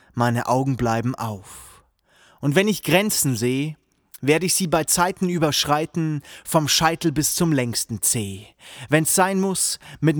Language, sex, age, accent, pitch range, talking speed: German, male, 30-49, German, 115-165 Hz, 145 wpm